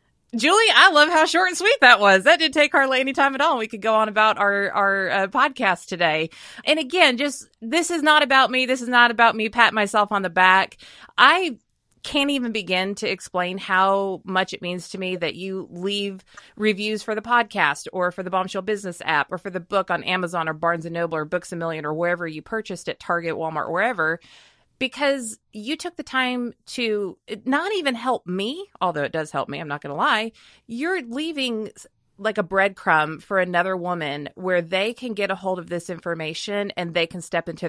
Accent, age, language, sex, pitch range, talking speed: American, 30-49, English, female, 170-230 Hz, 215 wpm